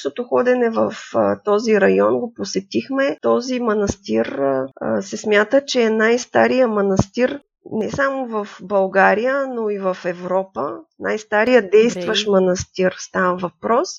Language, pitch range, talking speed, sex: Bulgarian, 195-250 Hz, 135 wpm, female